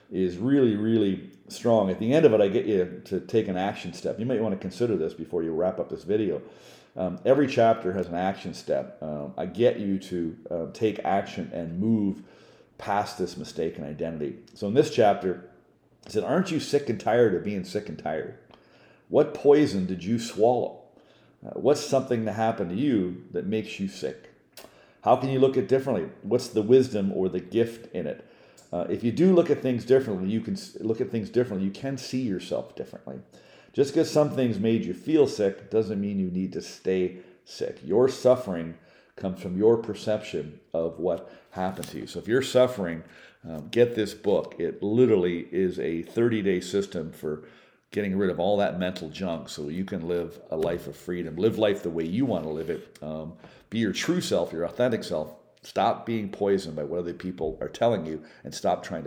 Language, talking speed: English, 205 wpm